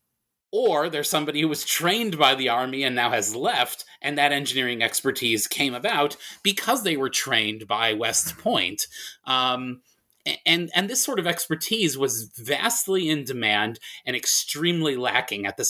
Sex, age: male, 30-49